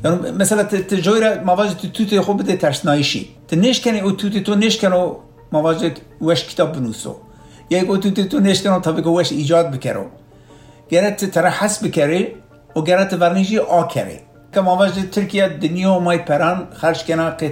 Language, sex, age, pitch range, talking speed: Turkish, male, 60-79, 145-185 Hz, 165 wpm